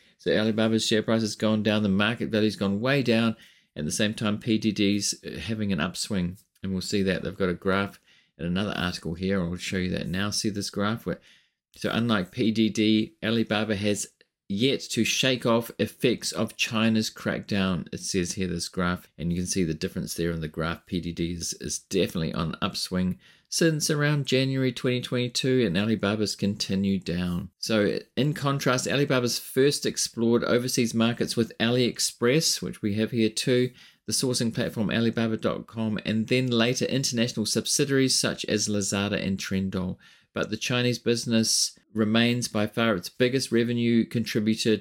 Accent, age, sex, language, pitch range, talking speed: Australian, 30-49, male, English, 100-120 Hz, 165 wpm